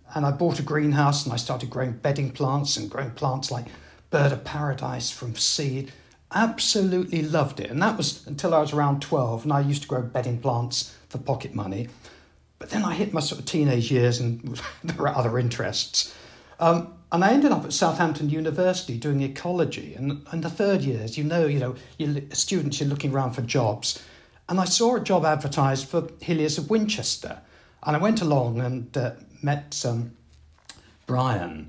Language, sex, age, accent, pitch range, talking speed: English, male, 60-79, British, 125-165 Hz, 190 wpm